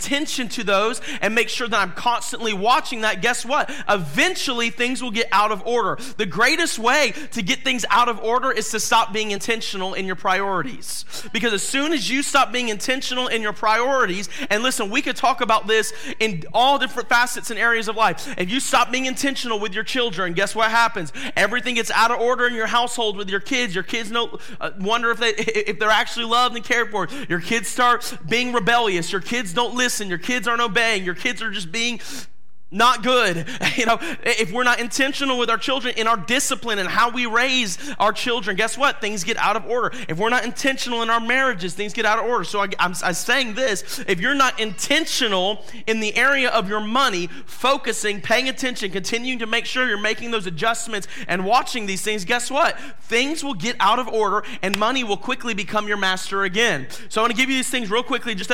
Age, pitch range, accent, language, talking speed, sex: 30-49, 210-250 Hz, American, English, 220 wpm, male